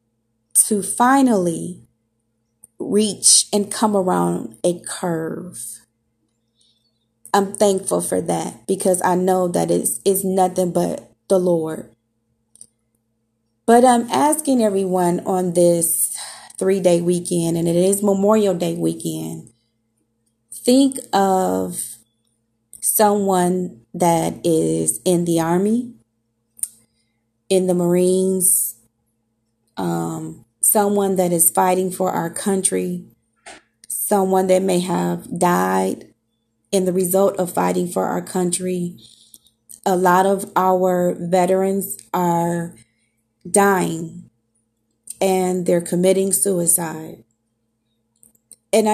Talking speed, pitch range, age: 100 wpm, 115-190 Hz, 20-39